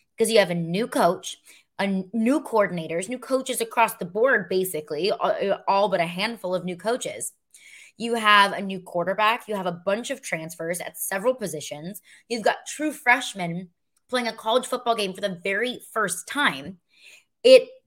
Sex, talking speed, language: female, 170 wpm, English